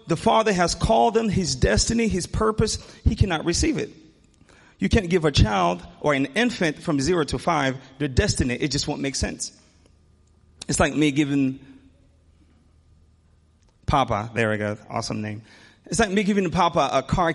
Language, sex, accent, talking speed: English, male, American, 170 wpm